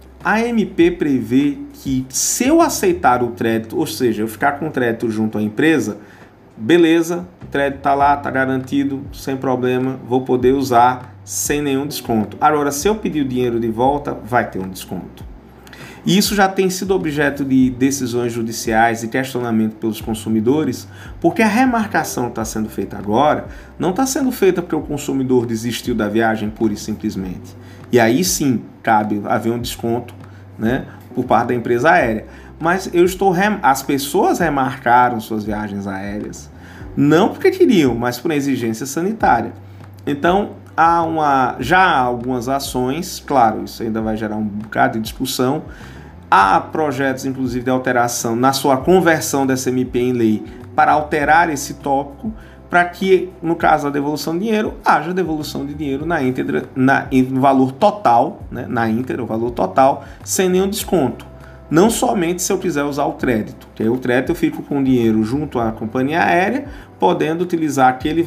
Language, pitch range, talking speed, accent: Portuguese, 115-155 Hz, 165 wpm, Brazilian